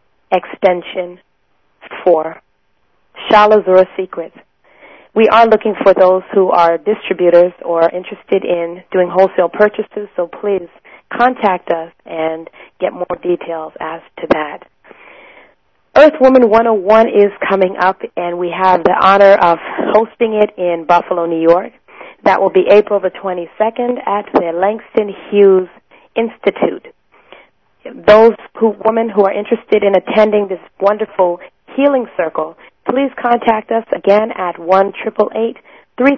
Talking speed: 135 wpm